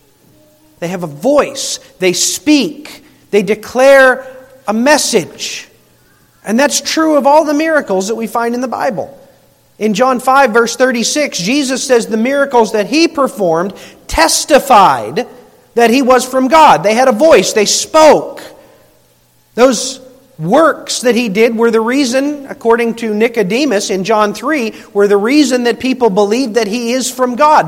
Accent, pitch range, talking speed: American, 195-260 Hz, 155 wpm